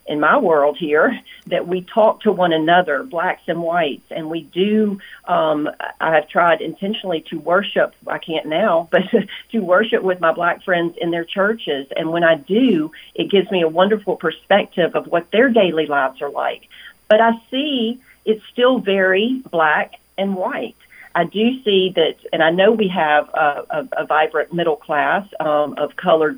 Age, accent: 40-59, American